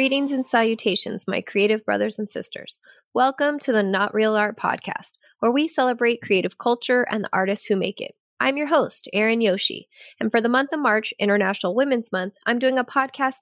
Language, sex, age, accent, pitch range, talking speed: English, female, 20-39, American, 205-260 Hz, 195 wpm